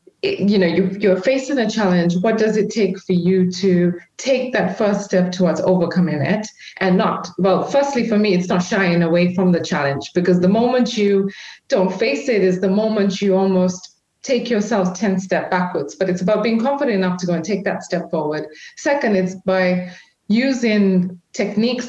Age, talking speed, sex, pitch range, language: 30-49, 185 wpm, female, 180-235 Hz, English